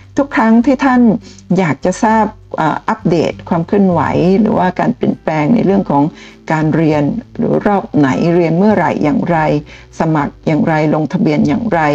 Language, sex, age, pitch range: Thai, female, 60-79, 155-220 Hz